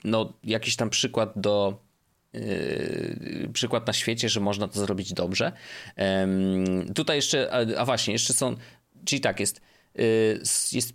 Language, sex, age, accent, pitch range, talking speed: Polish, male, 30-49, native, 100-140 Hz, 150 wpm